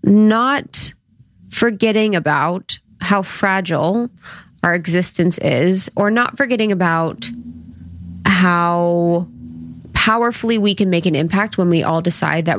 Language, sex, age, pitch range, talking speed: English, female, 20-39, 160-185 Hz, 115 wpm